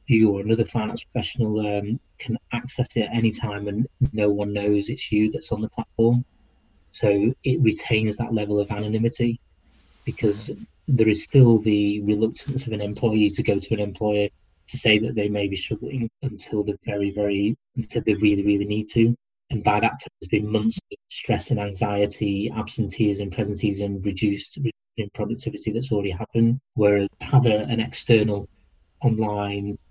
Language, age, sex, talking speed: English, 30-49, male, 175 wpm